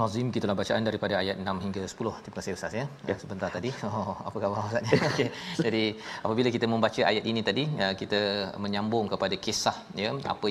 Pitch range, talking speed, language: 100-120 Hz, 185 wpm, Malayalam